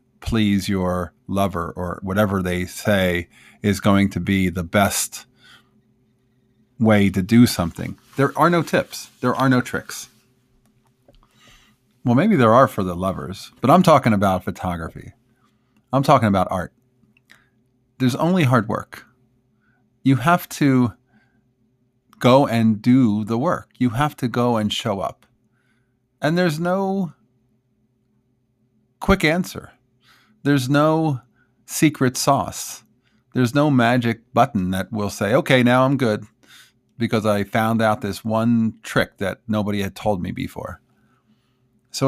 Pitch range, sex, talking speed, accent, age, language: 105-125 Hz, male, 135 wpm, American, 40-59, English